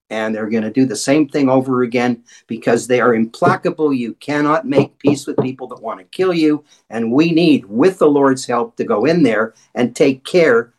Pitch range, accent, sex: 125-175 Hz, American, male